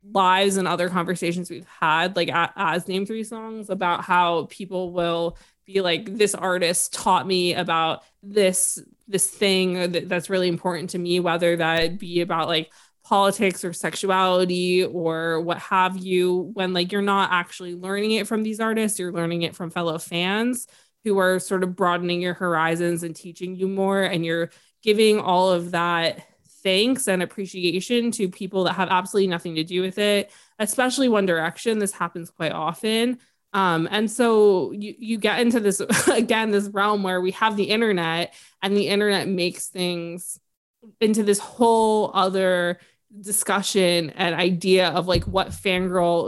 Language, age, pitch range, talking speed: English, 20-39, 175-205 Hz, 165 wpm